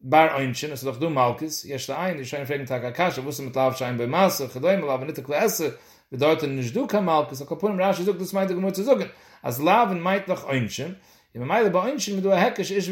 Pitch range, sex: 145-190 Hz, male